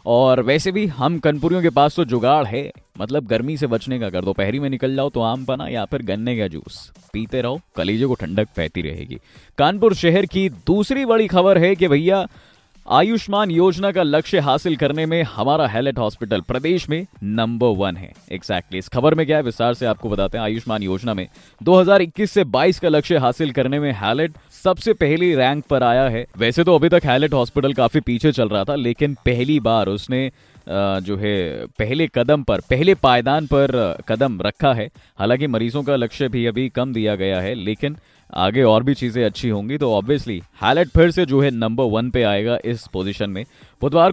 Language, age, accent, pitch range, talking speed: Hindi, 20-39, native, 110-160 Hz, 200 wpm